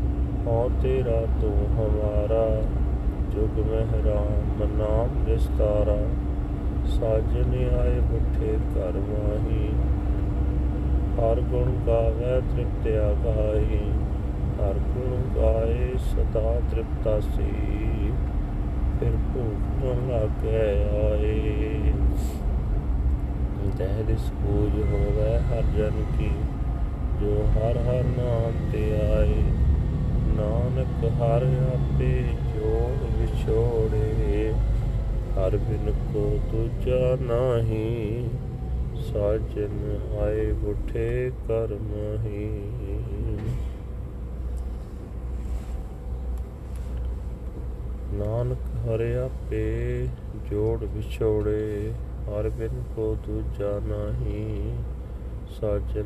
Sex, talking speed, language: male, 70 wpm, Punjabi